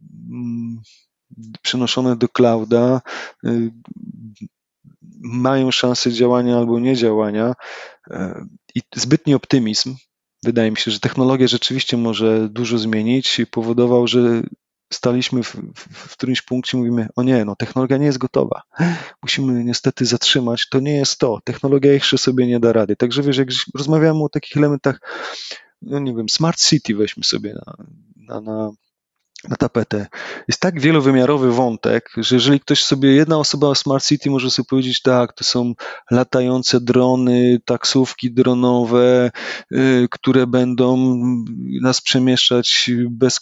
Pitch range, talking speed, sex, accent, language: 120-135 Hz, 135 wpm, male, native, Polish